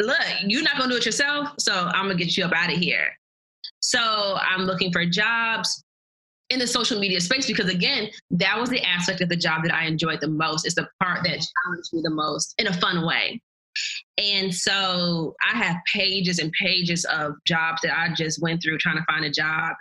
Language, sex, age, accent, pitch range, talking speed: English, female, 20-39, American, 165-205 Hz, 220 wpm